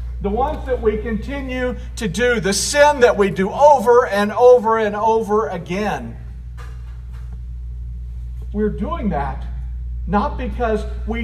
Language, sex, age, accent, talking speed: English, male, 50-69, American, 130 wpm